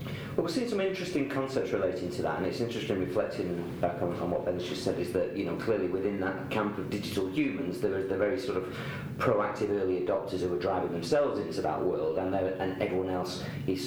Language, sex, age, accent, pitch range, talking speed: English, male, 40-59, British, 95-120 Hz, 220 wpm